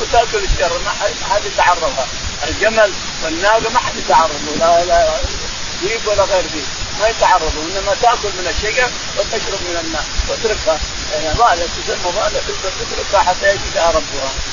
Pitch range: 200-235 Hz